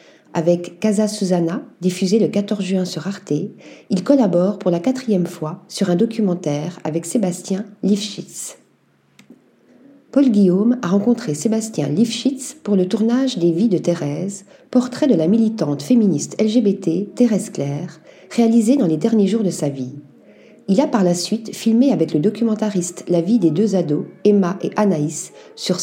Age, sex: 40-59, female